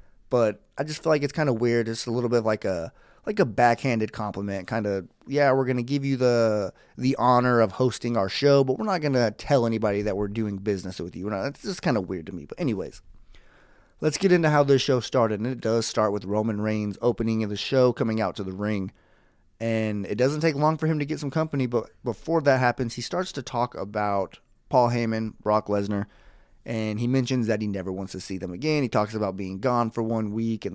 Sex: male